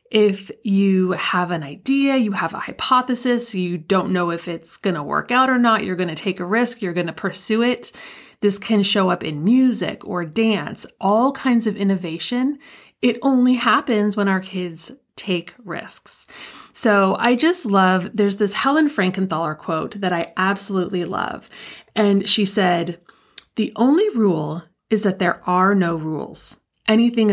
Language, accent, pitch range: English, American, 180-220 Hz